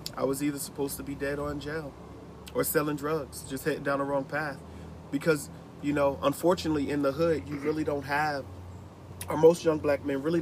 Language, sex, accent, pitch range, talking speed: English, male, American, 125-145 Hz, 205 wpm